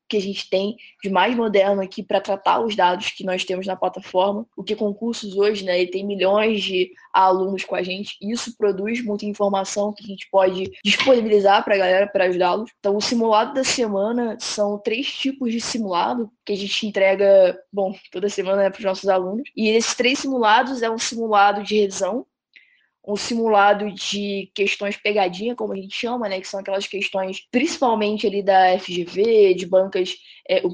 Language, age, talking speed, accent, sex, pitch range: Portuguese, 10-29, 185 wpm, Brazilian, female, 195-235 Hz